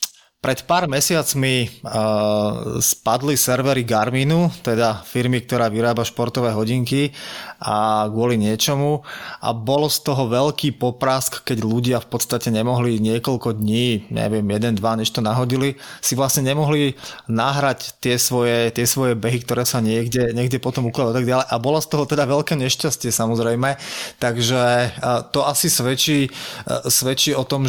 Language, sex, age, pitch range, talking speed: Slovak, male, 20-39, 120-145 Hz, 140 wpm